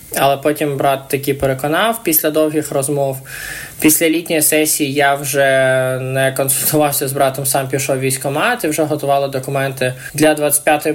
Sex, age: male, 20-39